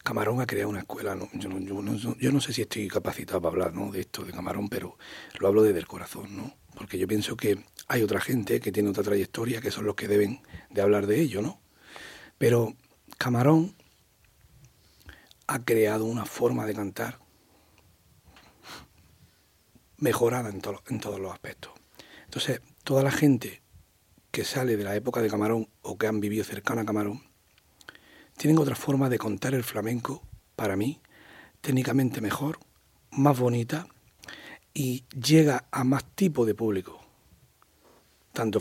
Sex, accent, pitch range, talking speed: male, Spanish, 105-130 Hz, 165 wpm